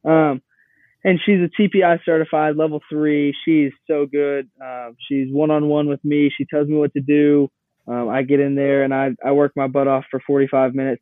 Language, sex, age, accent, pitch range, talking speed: English, male, 20-39, American, 130-150 Hz, 200 wpm